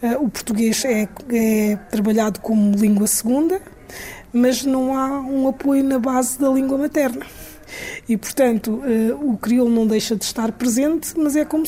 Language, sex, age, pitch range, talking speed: Portuguese, female, 20-39, 220-260 Hz, 155 wpm